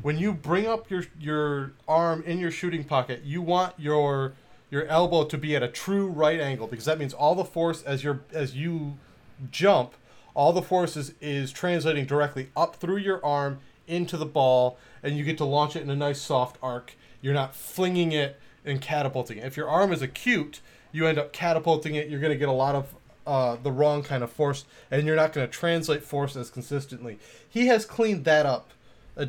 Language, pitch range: English, 130-165 Hz